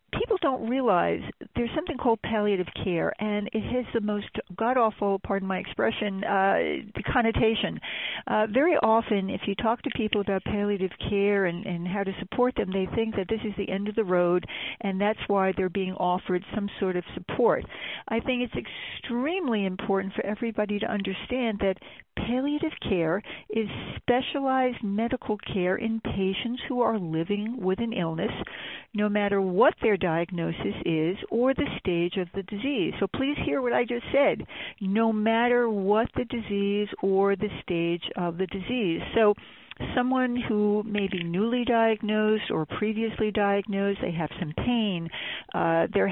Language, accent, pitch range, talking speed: English, American, 195-240 Hz, 165 wpm